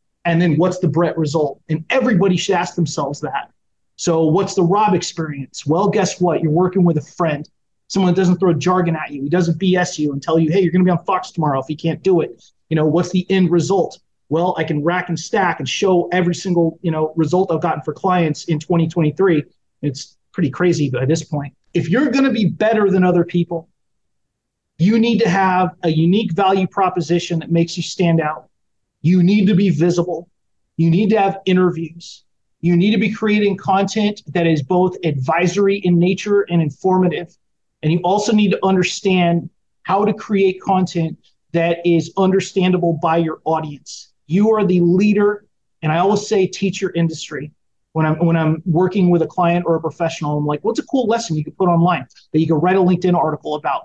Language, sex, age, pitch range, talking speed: English, male, 30-49, 160-190 Hz, 205 wpm